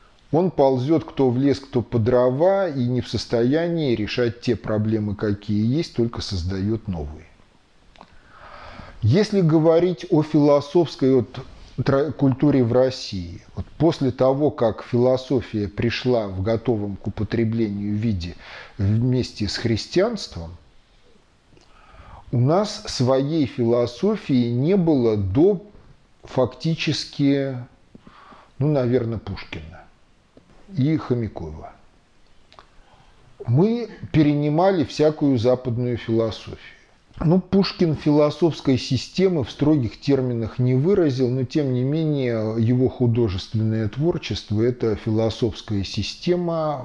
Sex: male